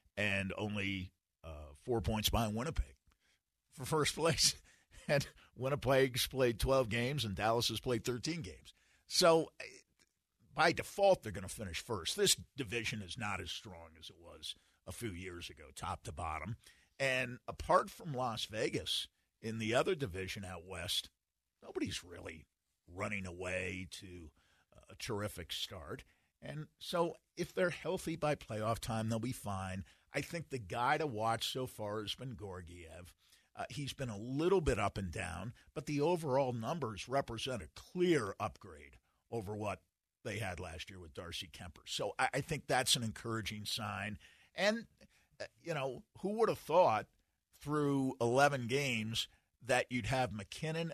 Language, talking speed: English, 160 wpm